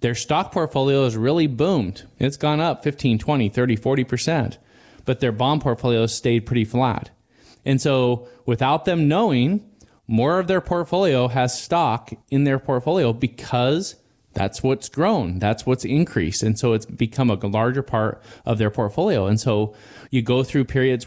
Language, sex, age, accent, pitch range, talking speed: English, male, 20-39, American, 105-130 Hz, 165 wpm